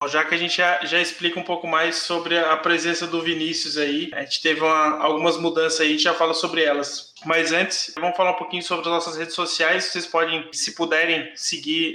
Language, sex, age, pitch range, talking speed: Portuguese, male, 20-39, 155-180 Hz, 220 wpm